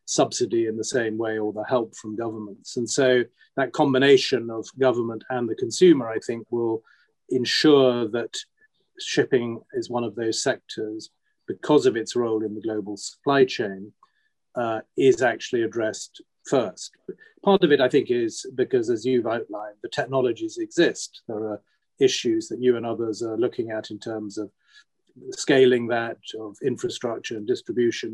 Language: English